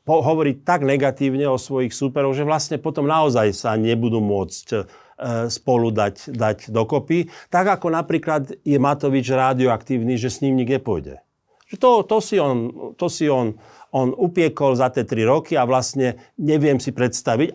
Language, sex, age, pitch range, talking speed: Slovak, male, 50-69, 125-160 Hz, 155 wpm